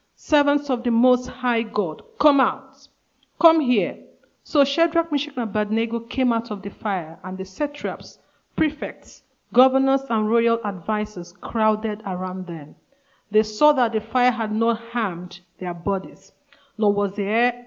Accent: Nigerian